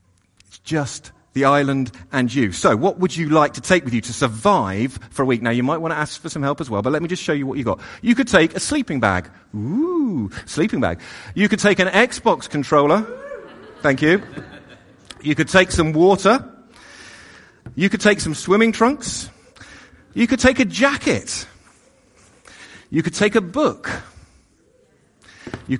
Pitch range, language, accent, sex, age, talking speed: 135-205 Hz, English, British, male, 40-59, 180 wpm